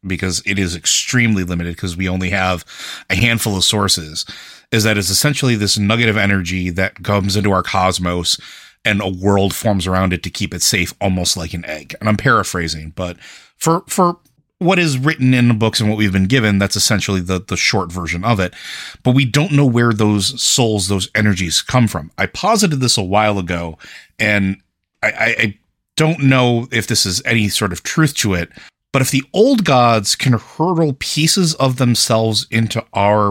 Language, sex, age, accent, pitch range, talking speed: English, male, 30-49, American, 95-120 Hz, 195 wpm